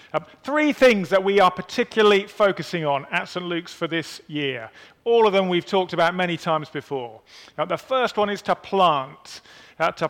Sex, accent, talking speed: male, British, 210 wpm